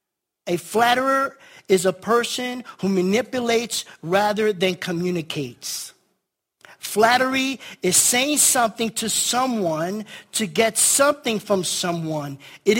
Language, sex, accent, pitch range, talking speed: English, male, American, 170-215 Hz, 105 wpm